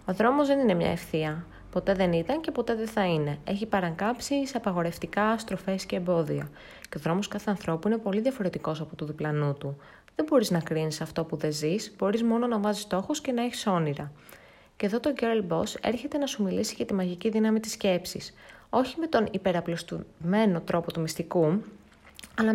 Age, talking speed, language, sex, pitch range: 20-39, 195 wpm, Greek, female, 175-230 Hz